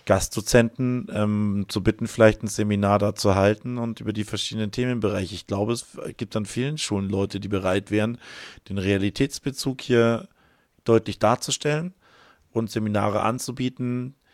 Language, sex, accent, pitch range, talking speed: German, male, German, 95-115 Hz, 140 wpm